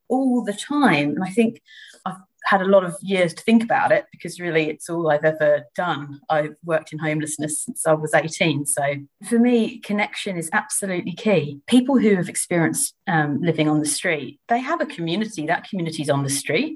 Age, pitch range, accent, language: 30-49, 160-210 Hz, British, English